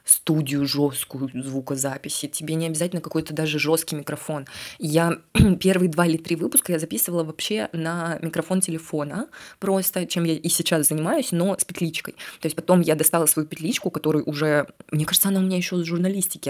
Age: 20-39